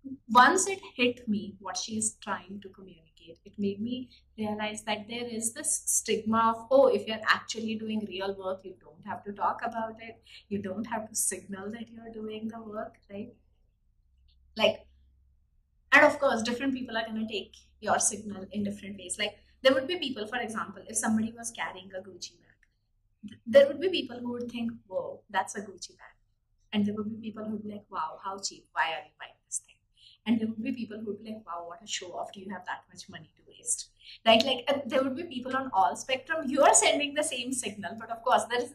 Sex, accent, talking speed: female, Indian, 225 wpm